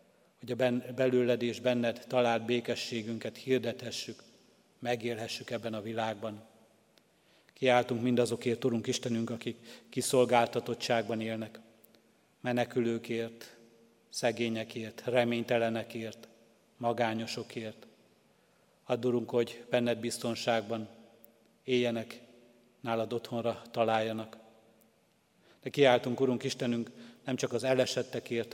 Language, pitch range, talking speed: Hungarian, 115-125 Hz, 80 wpm